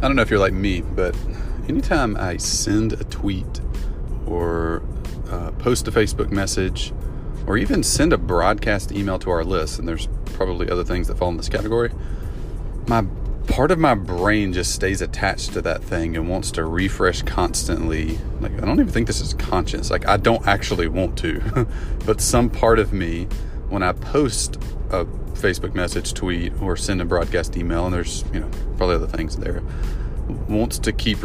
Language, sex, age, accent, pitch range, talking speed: English, male, 30-49, American, 85-105 Hz, 185 wpm